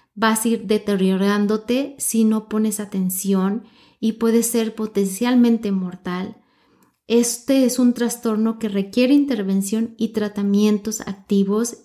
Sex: female